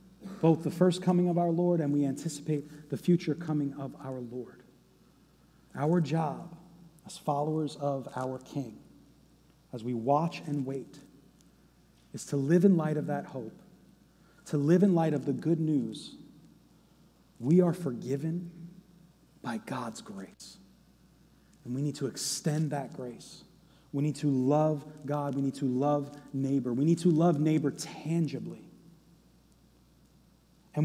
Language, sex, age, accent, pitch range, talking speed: English, male, 30-49, American, 145-185 Hz, 145 wpm